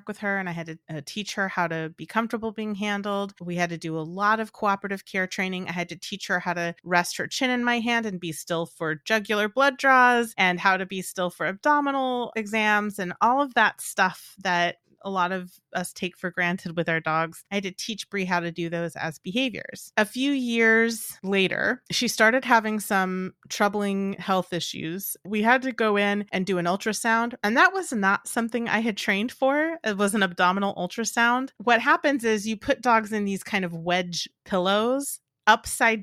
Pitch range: 180-230 Hz